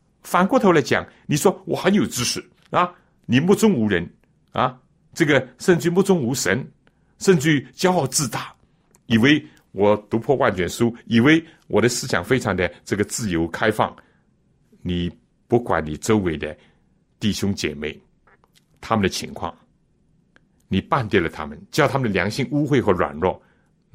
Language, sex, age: Chinese, male, 60-79